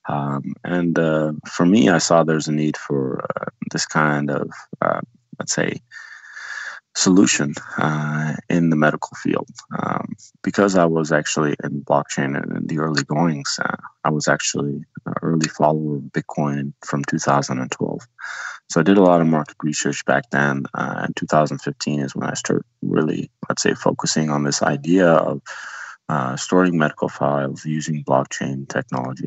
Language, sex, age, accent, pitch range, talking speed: English, male, 20-39, American, 70-80 Hz, 160 wpm